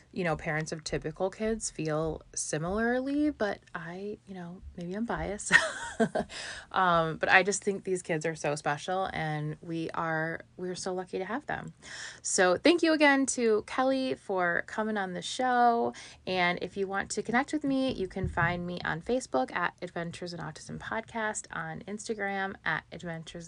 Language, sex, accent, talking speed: English, female, American, 175 wpm